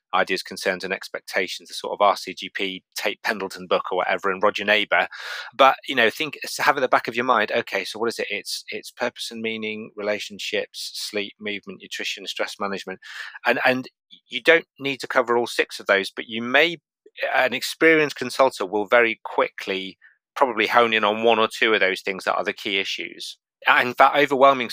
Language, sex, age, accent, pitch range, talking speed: English, male, 30-49, British, 105-130 Hz, 195 wpm